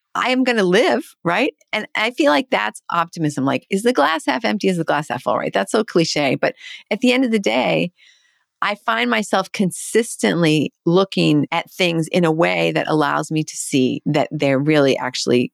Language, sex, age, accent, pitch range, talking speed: English, female, 40-59, American, 160-245 Hz, 205 wpm